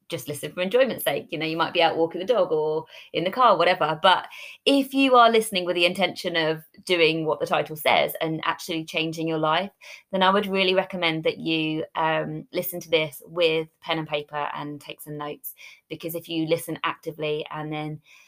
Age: 20-39